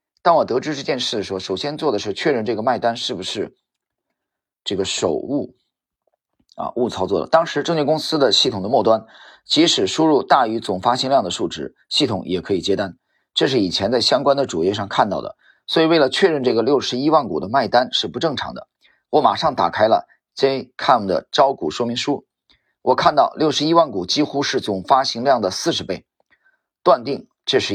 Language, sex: Chinese, male